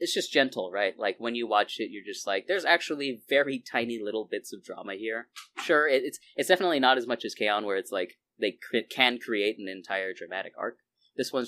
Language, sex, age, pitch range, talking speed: English, male, 20-39, 105-130 Hz, 230 wpm